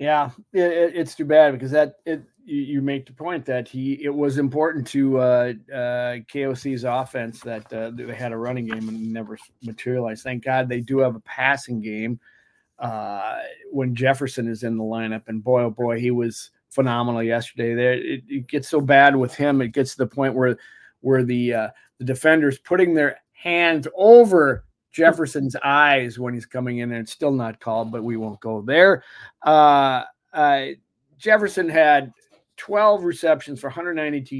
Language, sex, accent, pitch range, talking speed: English, male, American, 120-145 Hz, 175 wpm